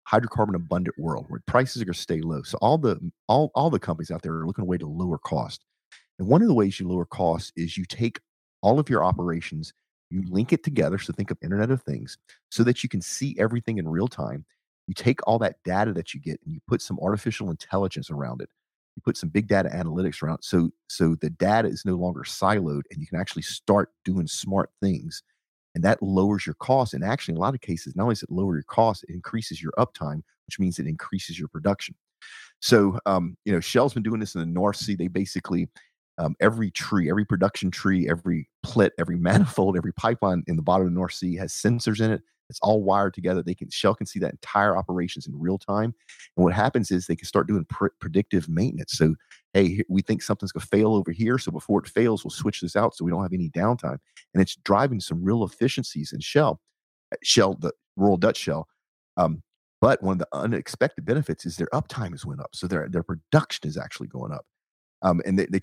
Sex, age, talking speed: male, 40-59, 230 wpm